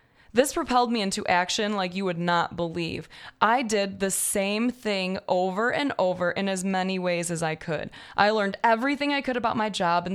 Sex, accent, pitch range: female, American, 175-225 Hz